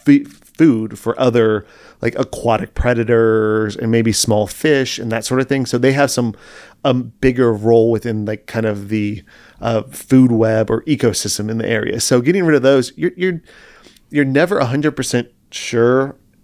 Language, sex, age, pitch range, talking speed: English, male, 30-49, 110-130 Hz, 175 wpm